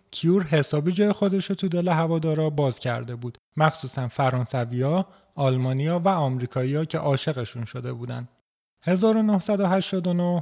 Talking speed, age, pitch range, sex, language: 120 wpm, 30-49, 130-160 Hz, male, Persian